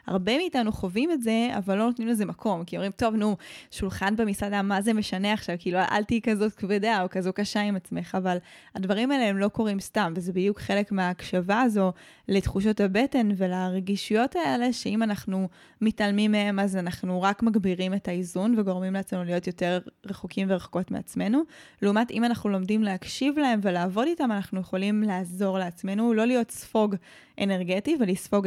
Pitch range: 190-220 Hz